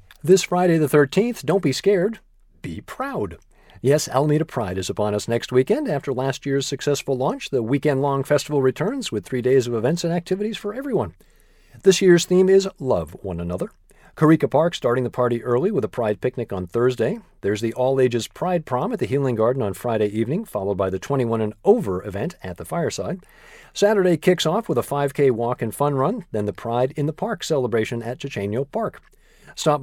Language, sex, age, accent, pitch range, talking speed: English, male, 50-69, American, 125-175 Hz, 195 wpm